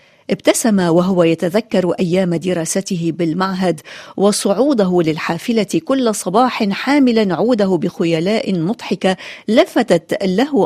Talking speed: 90 wpm